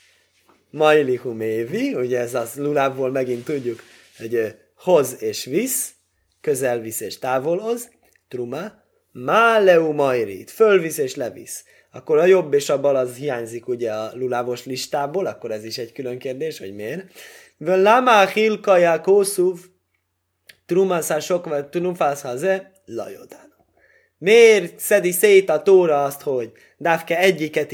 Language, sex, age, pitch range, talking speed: Hungarian, male, 20-39, 125-190 Hz, 130 wpm